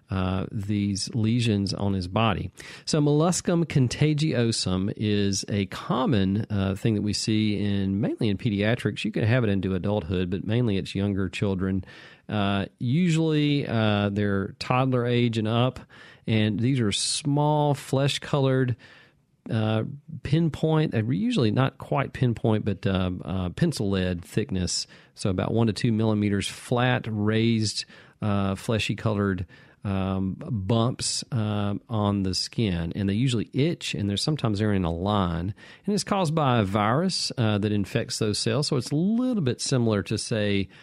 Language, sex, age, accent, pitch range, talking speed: English, male, 40-59, American, 100-130 Hz, 150 wpm